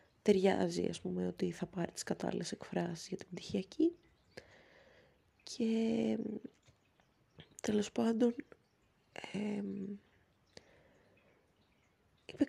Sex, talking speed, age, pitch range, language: female, 75 wpm, 20-39, 175-220 Hz, Greek